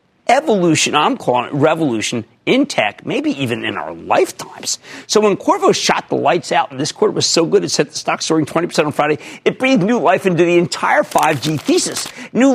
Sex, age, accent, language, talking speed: male, 50-69, American, English, 205 wpm